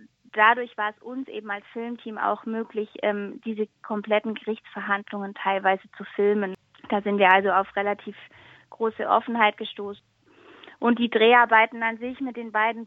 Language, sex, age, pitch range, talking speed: German, female, 20-39, 210-235 Hz, 155 wpm